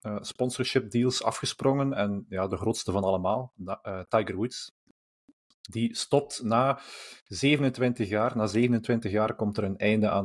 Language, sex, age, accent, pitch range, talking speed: Dutch, male, 30-49, Belgian, 100-125 Hz, 145 wpm